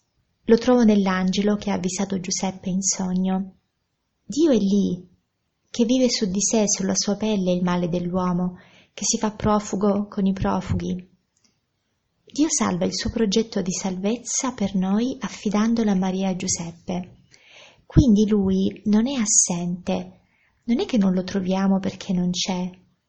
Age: 20-39